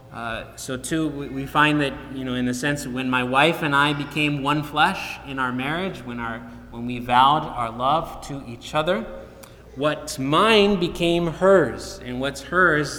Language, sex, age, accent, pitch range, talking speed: English, male, 20-39, American, 120-155 Hz, 180 wpm